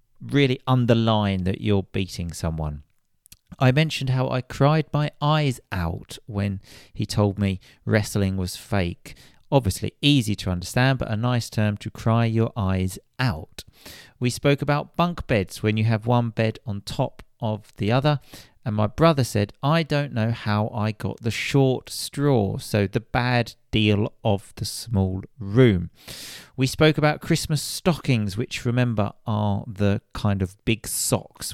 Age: 40-59